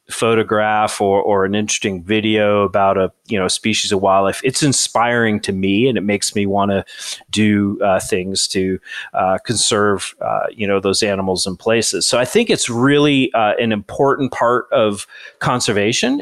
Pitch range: 105-135 Hz